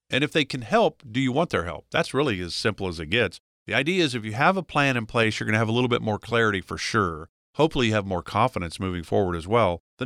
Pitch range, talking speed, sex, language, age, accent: 100-140 Hz, 285 wpm, male, English, 50-69, American